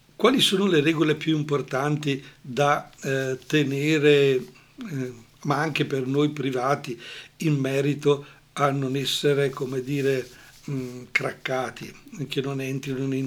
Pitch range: 130-155 Hz